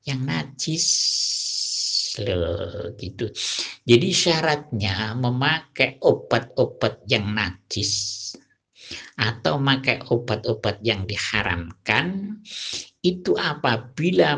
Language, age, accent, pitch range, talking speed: Indonesian, 50-69, native, 100-135 Hz, 70 wpm